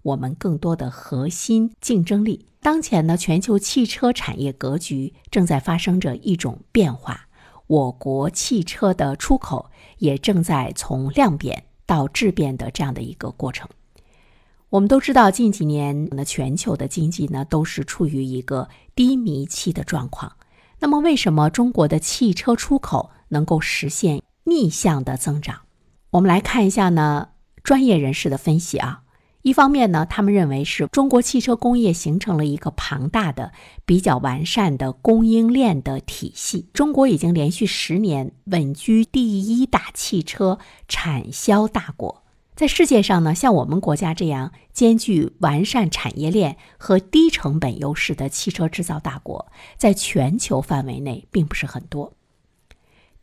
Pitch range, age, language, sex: 145-215 Hz, 50-69, Chinese, female